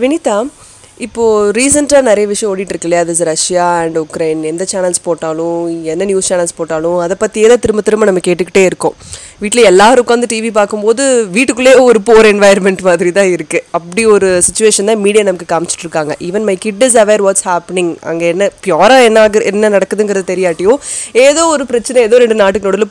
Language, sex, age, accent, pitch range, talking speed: Tamil, female, 20-39, native, 190-255 Hz, 180 wpm